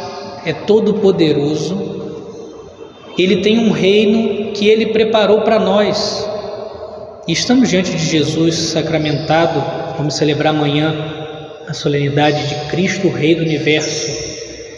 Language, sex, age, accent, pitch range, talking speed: Portuguese, male, 20-39, Brazilian, 165-200 Hz, 105 wpm